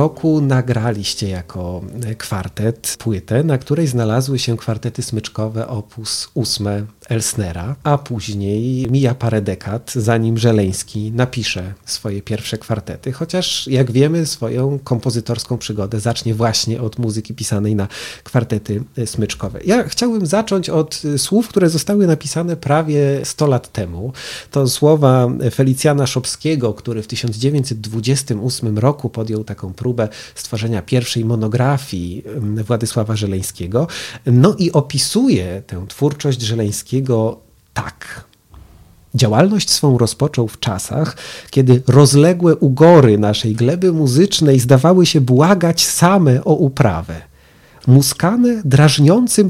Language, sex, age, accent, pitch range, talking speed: Polish, male, 40-59, native, 110-155 Hz, 115 wpm